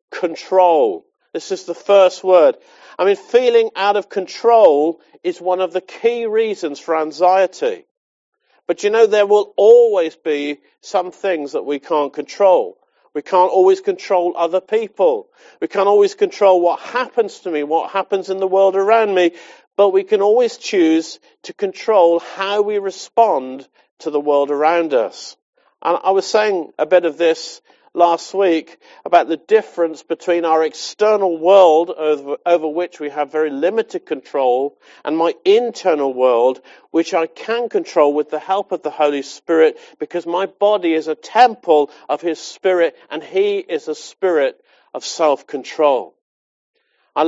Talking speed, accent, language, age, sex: 160 wpm, British, English, 50-69, male